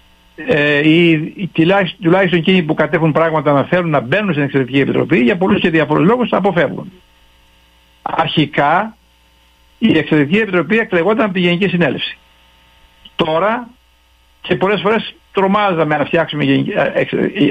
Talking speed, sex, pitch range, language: 135 wpm, male, 130-190 Hz, Greek